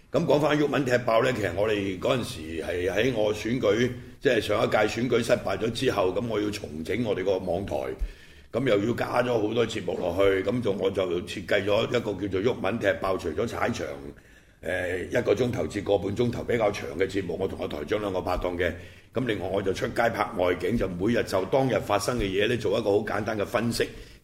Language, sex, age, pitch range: Chinese, male, 70-89, 95-120 Hz